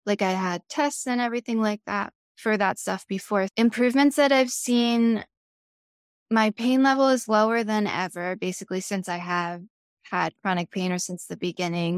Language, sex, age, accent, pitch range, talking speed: English, female, 10-29, American, 185-230 Hz, 170 wpm